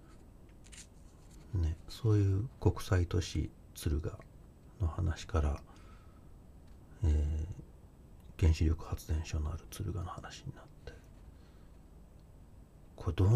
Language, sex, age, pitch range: Japanese, male, 40-59, 80-100 Hz